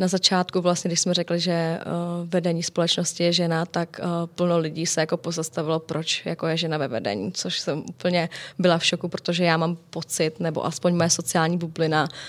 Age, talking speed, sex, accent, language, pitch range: 20-39, 185 wpm, female, native, Czech, 165-180 Hz